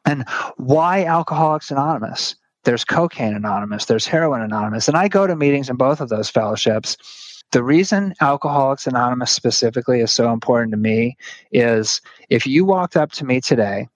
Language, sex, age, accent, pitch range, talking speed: English, male, 30-49, American, 115-155 Hz, 165 wpm